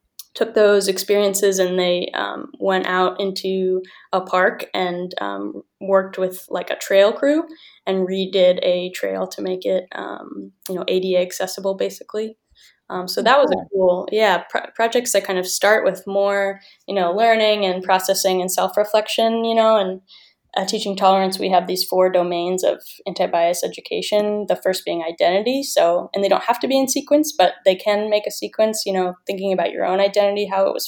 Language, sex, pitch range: English, female, 180-210 Hz